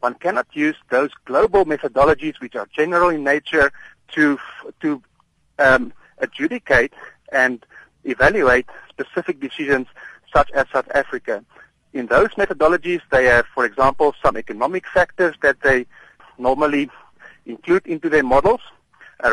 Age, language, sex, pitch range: 50-69, English, male, 135-195 Hz